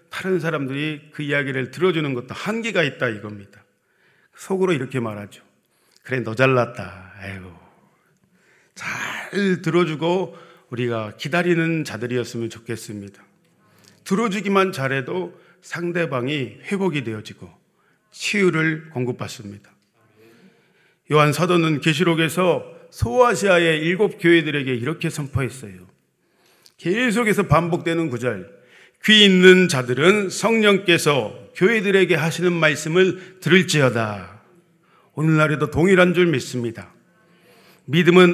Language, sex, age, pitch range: Korean, male, 40-59, 125-180 Hz